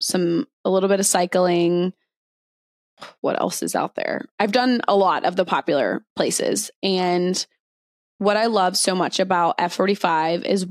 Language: English